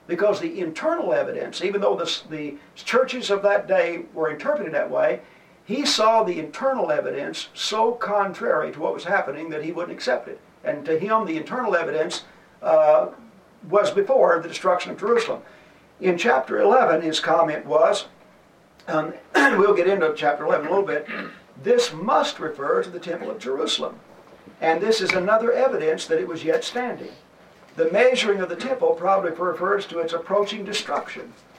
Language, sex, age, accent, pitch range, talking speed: English, male, 50-69, American, 165-245 Hz, 170 wpm